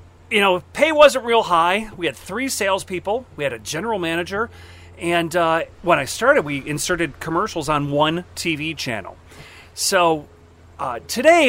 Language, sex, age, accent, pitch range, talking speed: English, male, 40-59, American, 140-215 Hz, 155 wpm